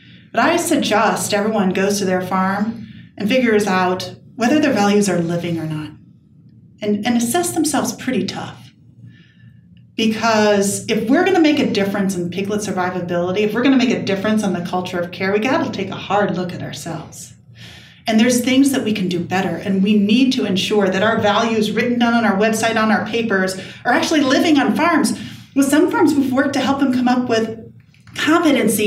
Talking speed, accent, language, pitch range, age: 195 wpm, American, English, 195-245 Hz, 40-59